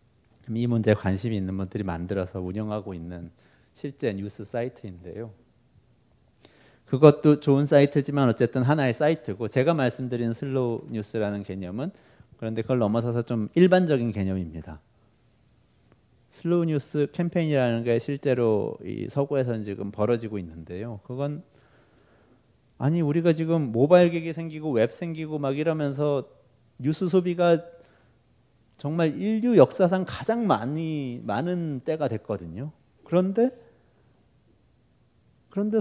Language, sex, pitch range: Korean, male, 105-150 Hz